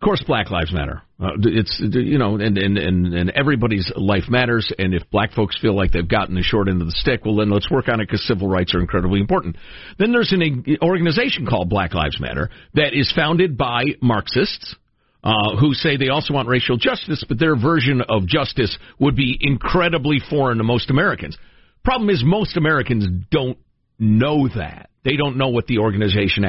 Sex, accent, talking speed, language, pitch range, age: male, American, 200 wpm, English, 105-155 Hz, 50-69